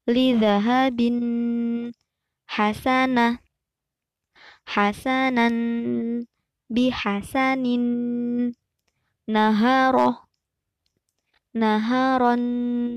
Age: 20-39